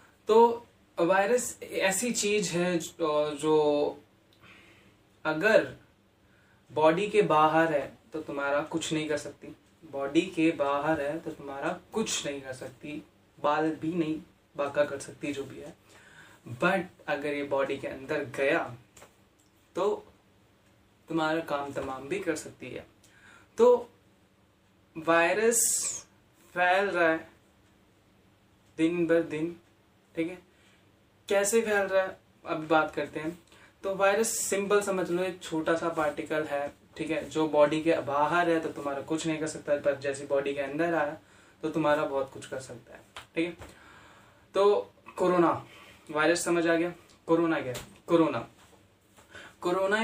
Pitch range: 140-175 Hz